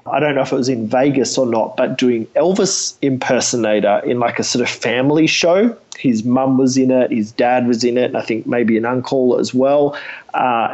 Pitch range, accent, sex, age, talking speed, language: 120-150 Hz, Australian, male, 30-49, 225 wpm, English